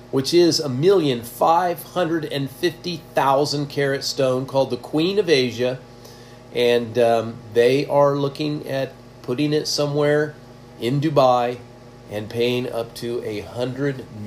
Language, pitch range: English, 120-145 Hz